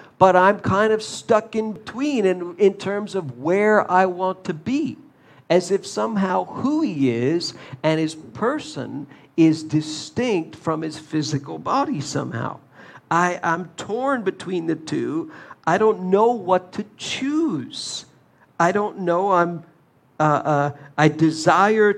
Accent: American